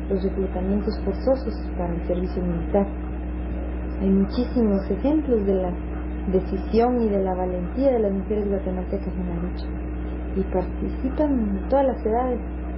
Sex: female